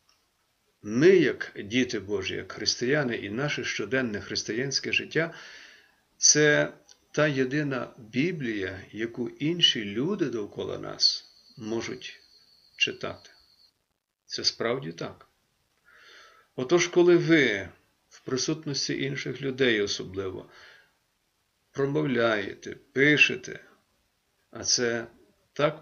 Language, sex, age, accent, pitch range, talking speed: Ukrainian, male, 50-69, native, 110-140 Hz, 90 wpm